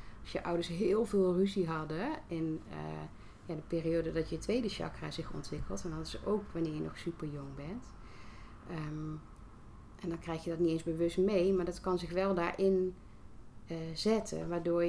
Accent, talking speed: Dutch, 180 wpm